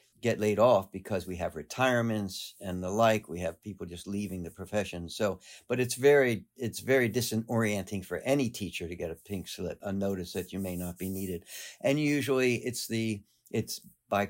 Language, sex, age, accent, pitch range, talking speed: English, male, 60-79, American, 100-120 Hz, 195 wpm